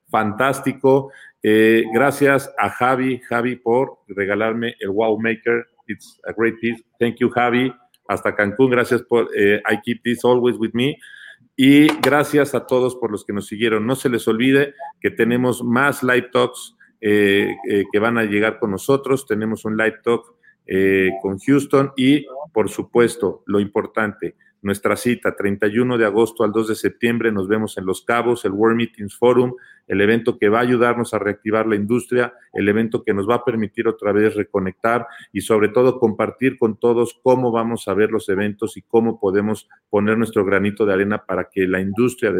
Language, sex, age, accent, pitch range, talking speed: Spanish, male, 40-59, Mexican, 105-125 Hz, 185 wpm